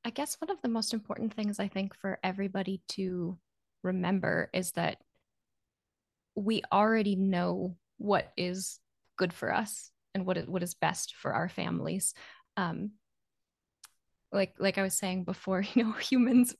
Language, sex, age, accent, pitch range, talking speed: English, female, 20-39, American, 170-200 Hz, 155 wpm